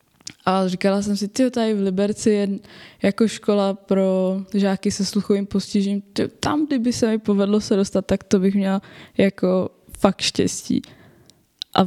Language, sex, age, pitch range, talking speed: Czech, female, 20-39, 190-220 Hz, 155 wpm